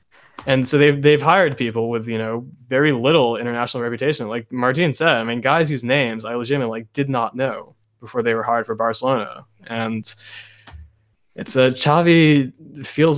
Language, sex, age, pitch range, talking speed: English, male, 20-39, 115-135 Hz, 175 wpm